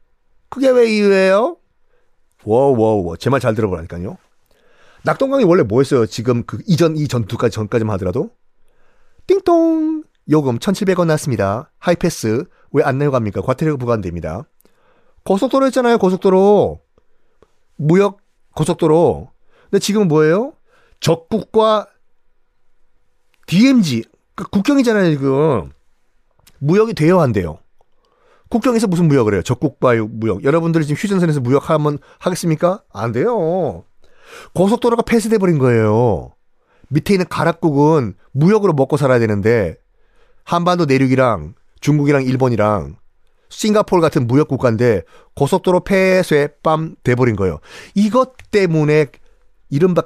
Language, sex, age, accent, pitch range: Korean, male, 40-59, native, 120-200 Hz